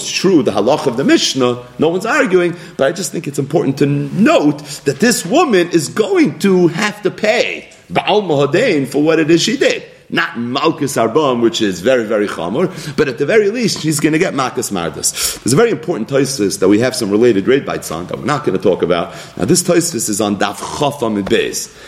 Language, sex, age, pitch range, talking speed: English, male, 40-59, 115-170 Hz, 215 wpm